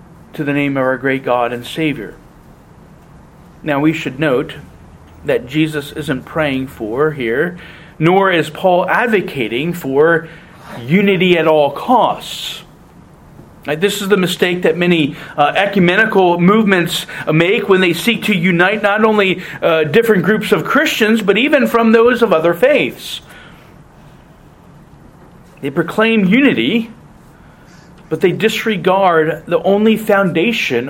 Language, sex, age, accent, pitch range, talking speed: English, male, 40-59, American, 160-220 Hz, 130 wpm